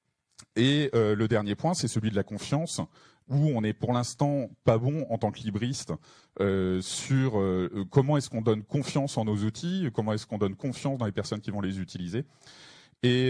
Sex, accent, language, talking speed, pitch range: male, French, French, 205 wpm, 105-135 Hz